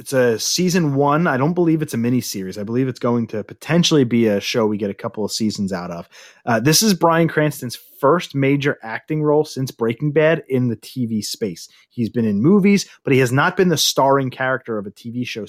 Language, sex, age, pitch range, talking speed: English, male, 30-49, 115-150 Hz, 230 wpm